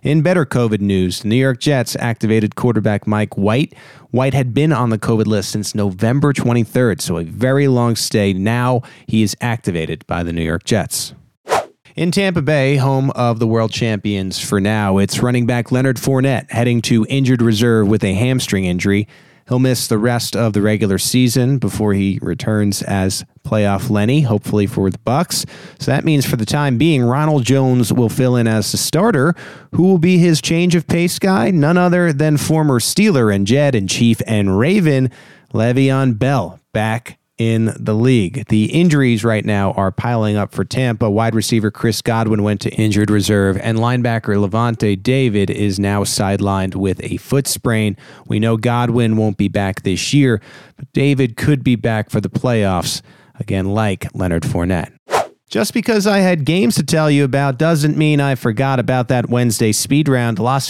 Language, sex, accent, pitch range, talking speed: English, male, American, 105-135 Hz, 180 wpm